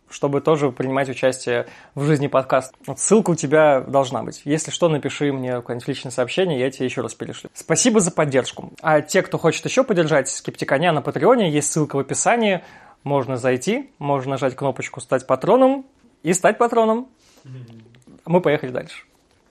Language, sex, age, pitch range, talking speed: Russian, male, 20-39, 135-170 Hz, 165 wpm